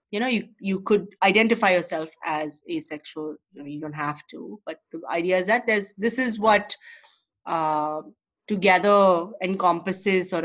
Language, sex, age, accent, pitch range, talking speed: English, female, 30-49, Indian, 170-215 Hz, 160 wpm